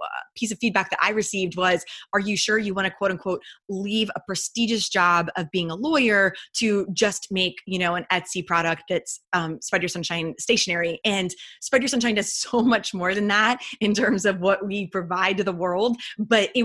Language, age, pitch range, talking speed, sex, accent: English, 20-39, 175-205 Hz, 210 wpm, female, American